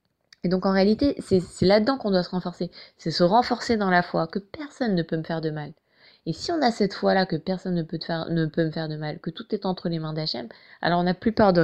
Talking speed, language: 290 wpm, French